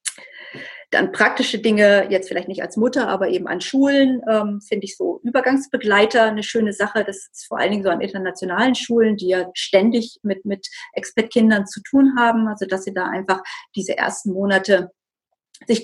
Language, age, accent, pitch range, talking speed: German, 40-59, German, 190-230 Hz, 180 wpm